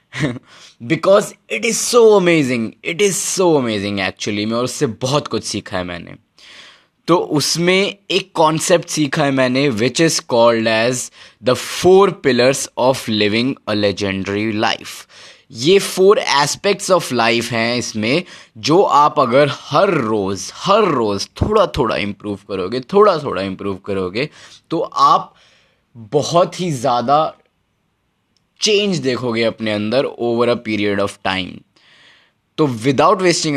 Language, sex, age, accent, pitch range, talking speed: Hindi, male, 20-39, native, 105-155 Hz, 135 wpm